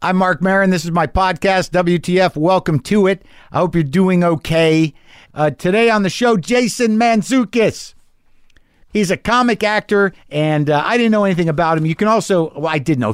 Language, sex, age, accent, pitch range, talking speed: English, male, 50-69, American, 115-165 Hz, 190 wpm